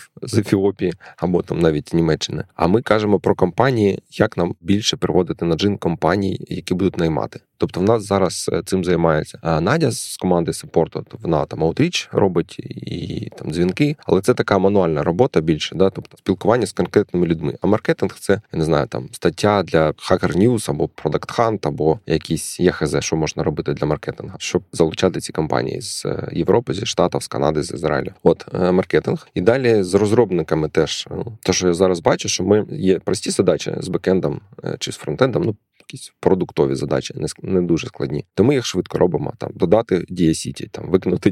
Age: 20-39